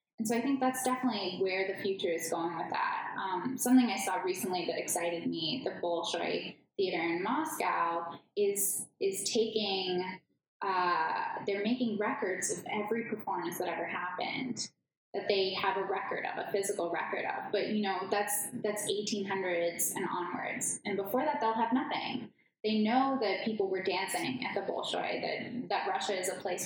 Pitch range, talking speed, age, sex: 185-225 Hz, 175 wpm, 10-29, female